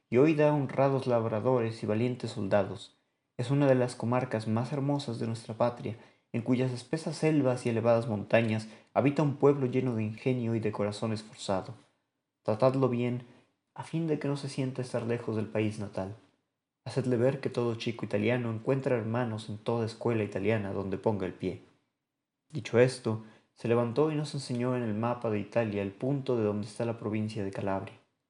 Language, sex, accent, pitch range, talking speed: Spanish, male, Mexican, 110-130 Hz, 180 wpm